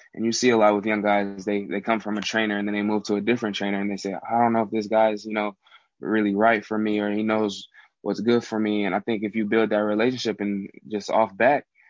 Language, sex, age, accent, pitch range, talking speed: English, male, 20-39, American, 105-110 Hz, 280 wpm